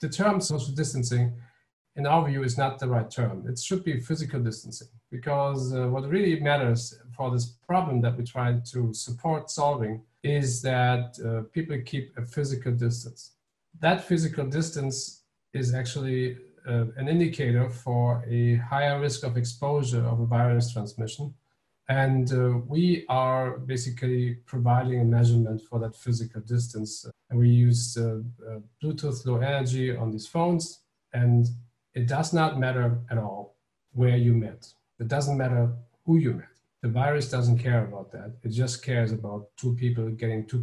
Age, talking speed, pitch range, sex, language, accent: 50-69, 165 wpm, 115-135 Hz, male, English, German